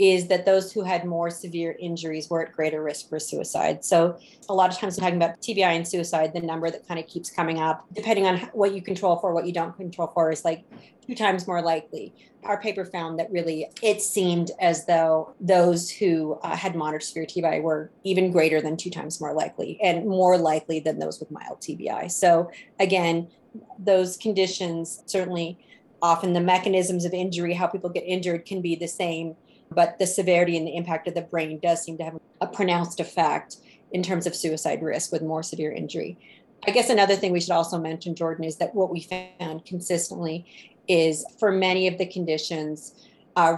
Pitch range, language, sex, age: 165-185 Hz, English, female, 30-49